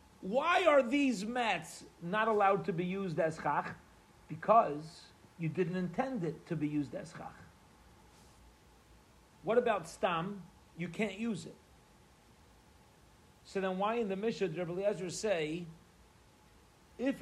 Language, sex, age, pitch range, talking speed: English, male, 40-59, 160-205 Hz, 130 wpm